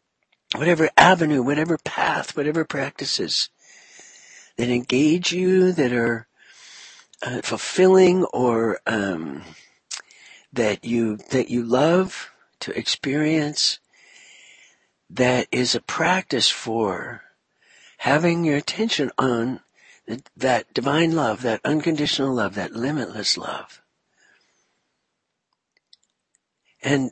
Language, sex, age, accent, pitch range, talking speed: English, male, 60-79, American, 140-190 Hz, 90 wpm